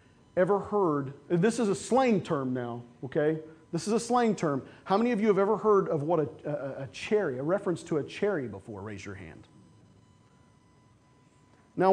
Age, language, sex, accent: 40-59, English, male, American